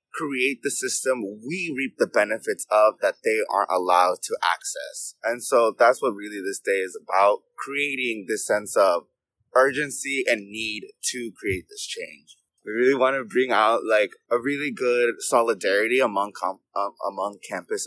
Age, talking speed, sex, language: 20-39, 170 wpm, male, English